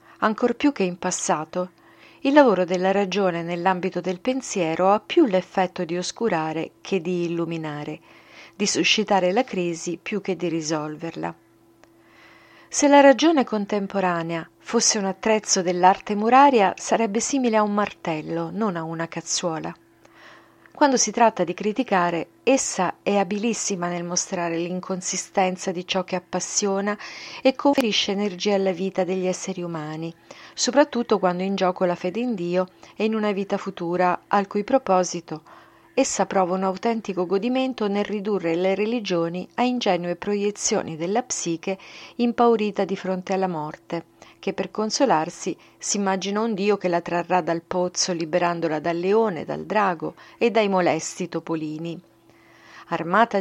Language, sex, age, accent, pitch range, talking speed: Italian, female, 40-59, native, 175-215 Hz, 140 wpm